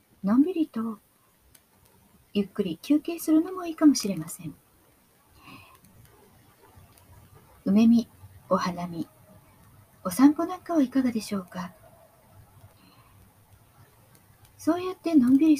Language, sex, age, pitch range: Japanese, female, 50-69, 195-290 Hz